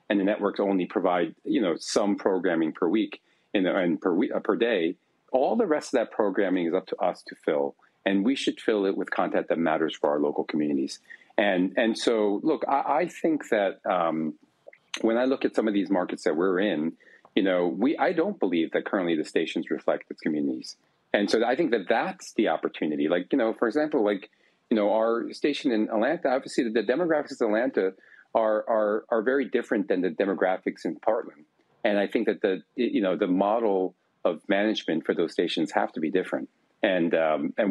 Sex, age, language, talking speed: male, 40-59, English, 210 wpm